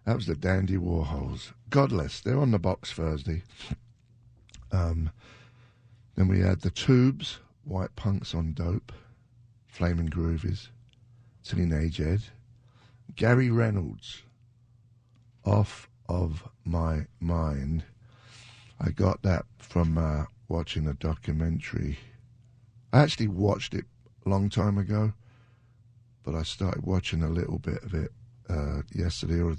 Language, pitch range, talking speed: English, 85-120 Hz, 120 wpm